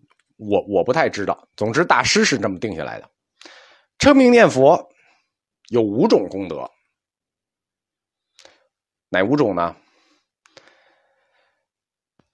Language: Chinese